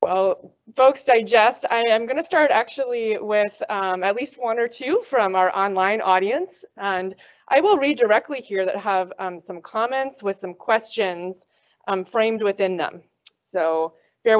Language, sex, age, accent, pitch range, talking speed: English, female, 20-39, American, 190-255 Hz, 165 wpm